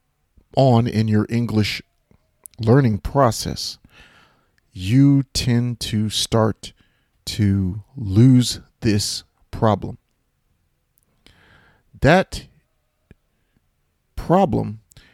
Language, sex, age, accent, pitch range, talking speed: English, male, 40-59, American, 90-115 Hz, 65 wpm